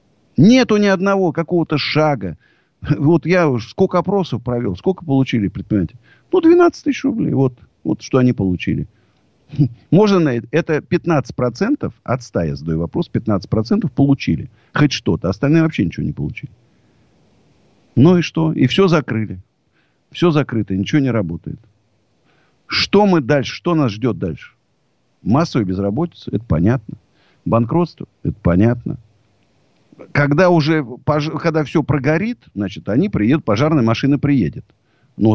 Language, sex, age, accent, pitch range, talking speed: Russian, male, 50-69, native, 105-160 Hz, 130 wpm